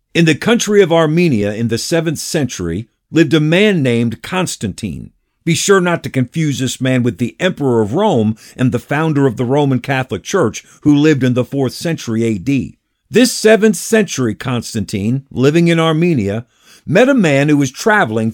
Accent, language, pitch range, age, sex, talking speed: American, English, 125-175 Hz, 50-69, male, 175 wpm